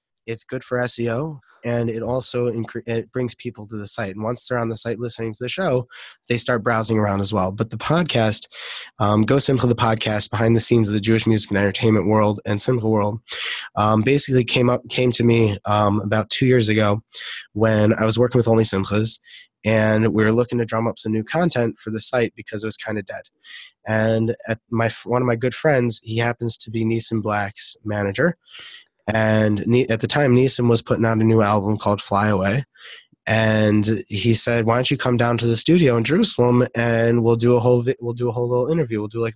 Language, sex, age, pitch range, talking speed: English, male, 20-39, 110-120 Hz, 225 wpm